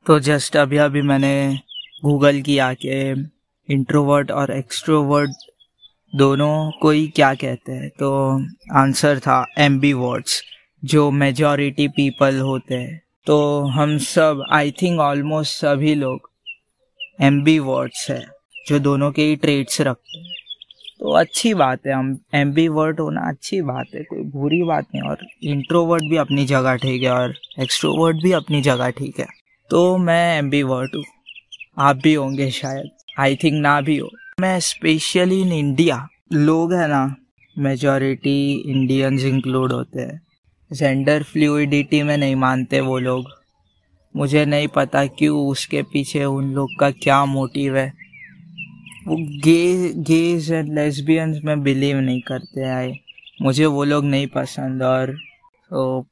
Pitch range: 135-155 Hz